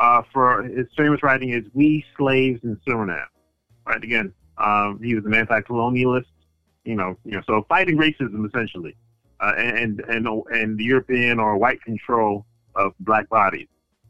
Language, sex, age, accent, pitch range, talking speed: English, male, 30-49, American, 100-125 Hz, 160 wpm